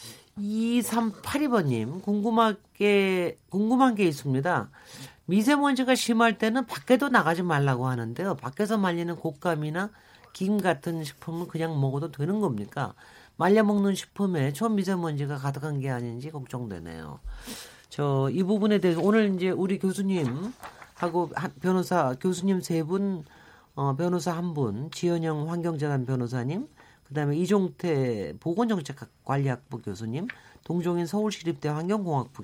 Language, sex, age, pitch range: Korean, male, 40-59, 135-200 Hz